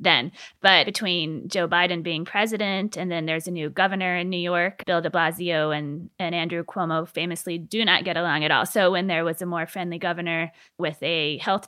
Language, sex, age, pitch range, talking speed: English, female, 20-39, 165-185 Hz, 210 wpm